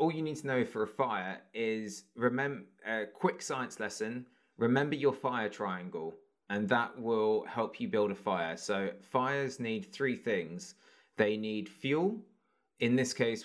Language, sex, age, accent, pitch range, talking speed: English, male, 30-49, British, 100-130 Hz, 165 wpm